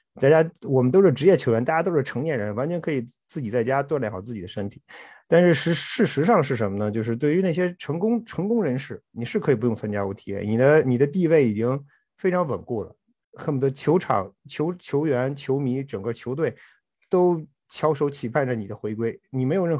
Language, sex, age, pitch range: Chinese, male, 50-69, 115-155 Hz